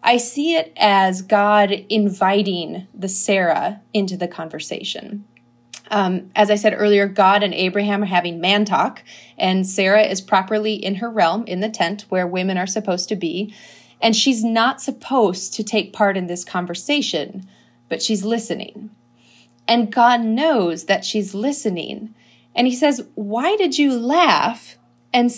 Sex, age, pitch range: female, 30-49, 195-245 Hz